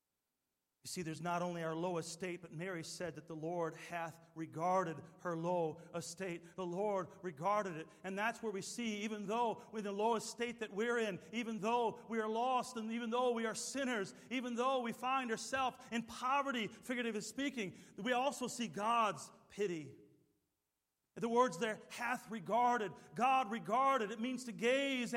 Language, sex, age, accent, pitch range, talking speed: English, male, 40-59, American, 170-250 Hz, 180 wpm